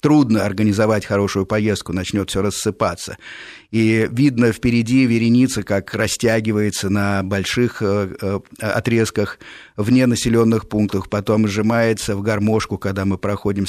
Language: Russian